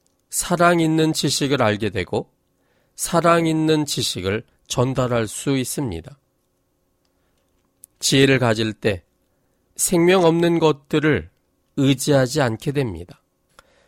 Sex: male